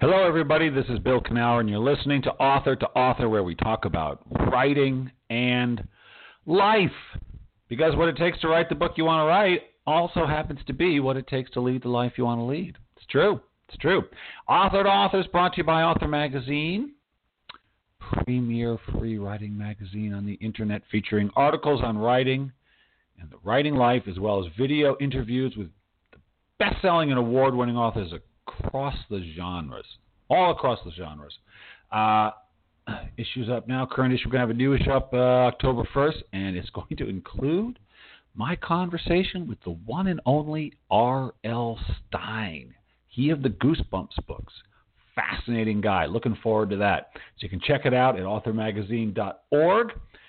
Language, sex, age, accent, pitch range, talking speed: English, male, 50-69, American, 110-150 Hz, 175 wpm